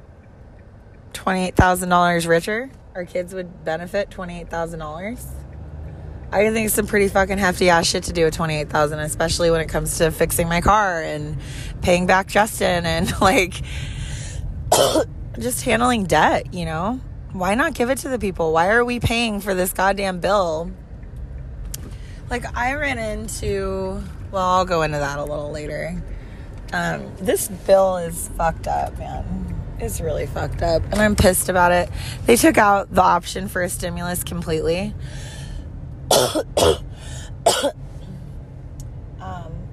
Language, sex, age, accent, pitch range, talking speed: English, female, 20-39, American, 120-190 Hz, 140 wpm